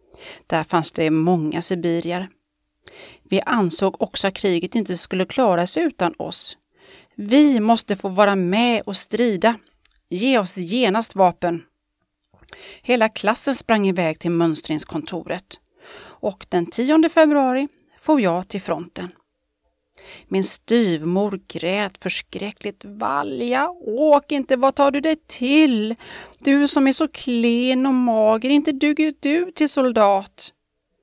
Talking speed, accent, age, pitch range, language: 125 wpm, native, 30-49, 175-245 Hz, Swedish